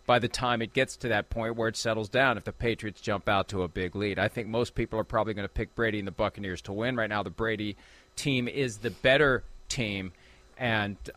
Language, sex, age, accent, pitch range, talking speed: English, male, 40-59, American, 105-135 Hz, 245 wpm